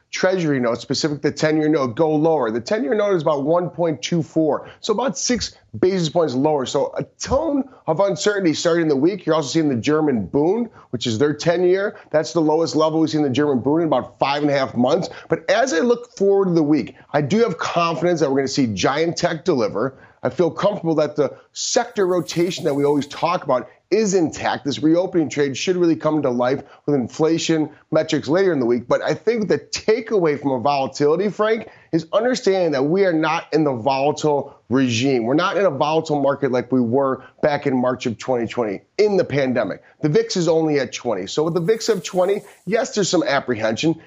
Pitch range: 145-185 Hz